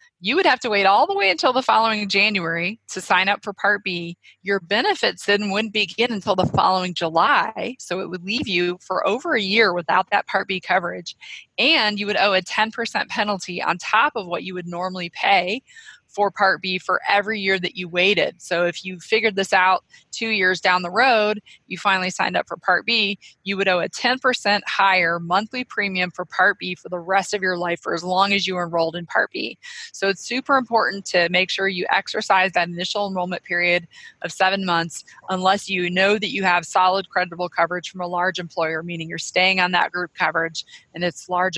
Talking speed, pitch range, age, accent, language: 215 wpm, 180-205 Hz, 20-39, American, English